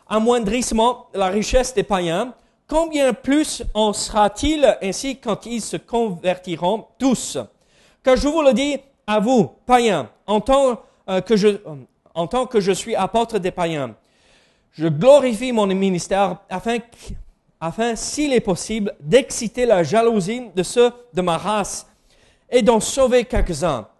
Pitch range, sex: 185-245 Hz, male